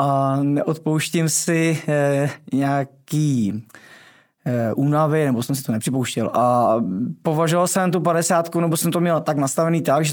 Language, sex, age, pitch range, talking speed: Czech, male, 20-39, 135-160 Hz, 135 wpm